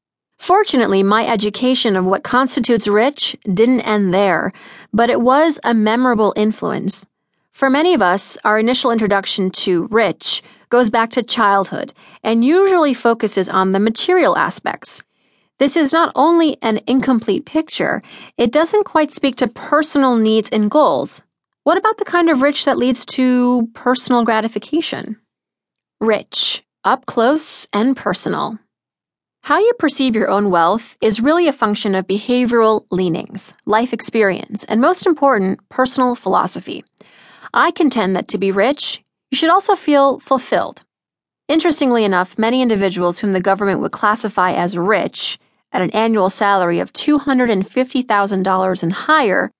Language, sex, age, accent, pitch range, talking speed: English, female, 30-49, American, 200-275 Hz, 145 wpm